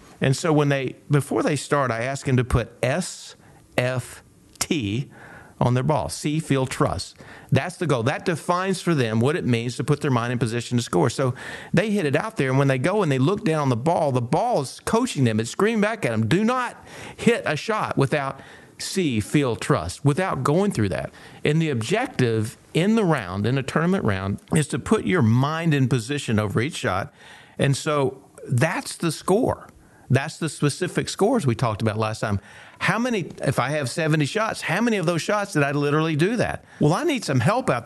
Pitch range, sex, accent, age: 115-155 Hz, male, American, 50-69